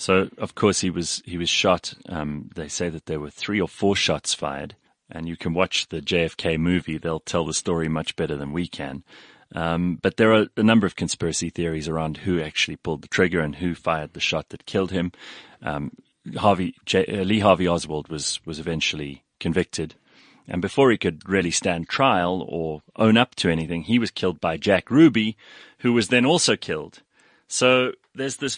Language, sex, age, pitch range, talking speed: English, male, 30-49, 85-100 Hz, 195 wpm